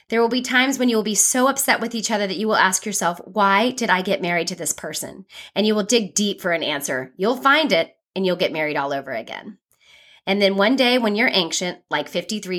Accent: American